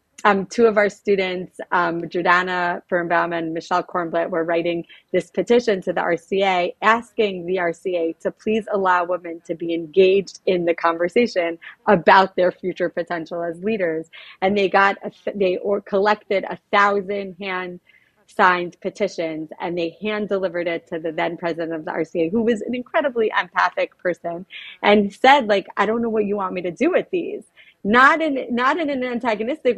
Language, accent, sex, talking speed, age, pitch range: English, American, female, 175 wpm, 30-49, 180-215 Hz